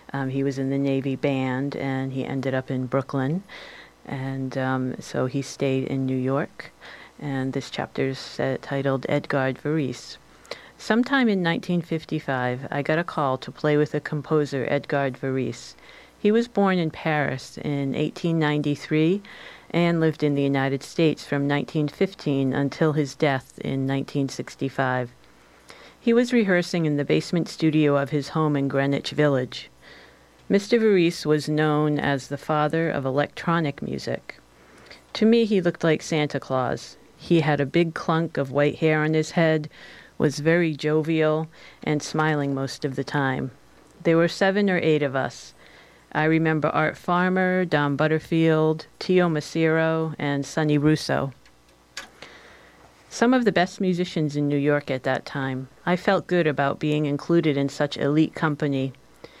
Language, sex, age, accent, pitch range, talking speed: English, female, 50-69, American, 135-160 Hz, 155 wpm